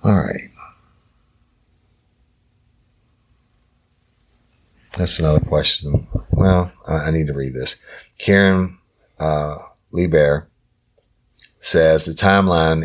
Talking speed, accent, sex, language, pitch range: 85 wpm, American, male, English, 70-80 Hz